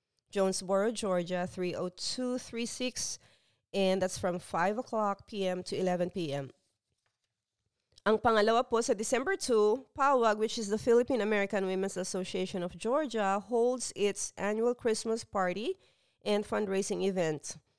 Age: 30-49